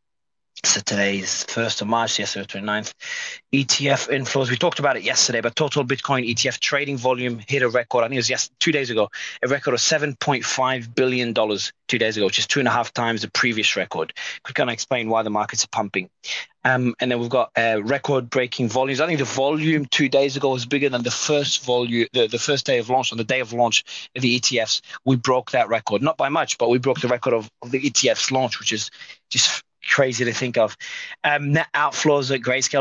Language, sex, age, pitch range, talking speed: English, male, 20-39, 120-140 Hz, 225 wpm